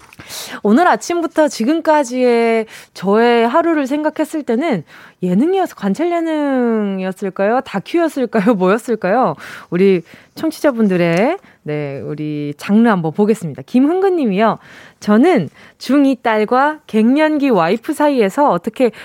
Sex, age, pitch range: female, 20-39, 200-300 Hz